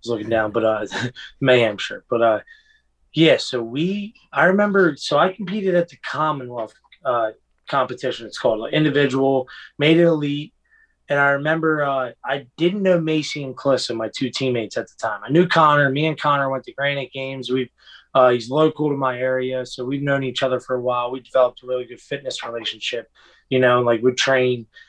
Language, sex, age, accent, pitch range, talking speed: English, male, 20-39, American, 120-145 Hz, 205 wpm